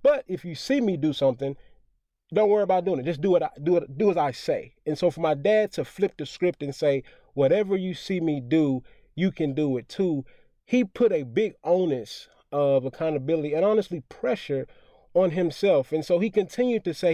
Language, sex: English, male